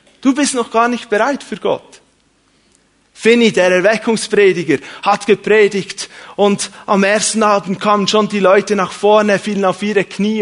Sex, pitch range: male, 150-205 Hz